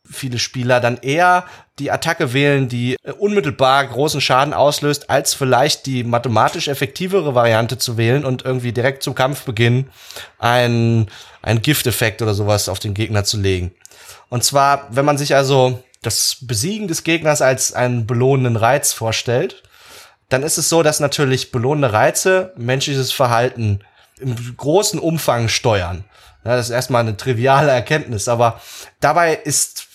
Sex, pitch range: male, 120-150 Hz